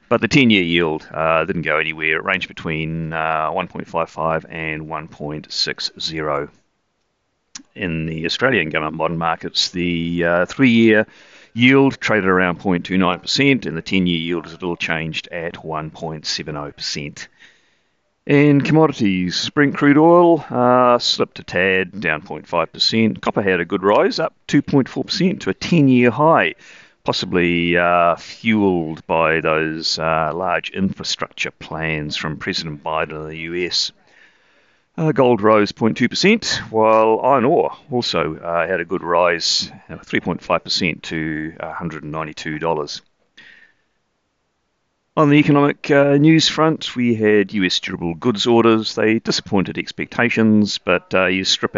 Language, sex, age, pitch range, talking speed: English, male, 40-59, 80-115 Hz, 130 wpm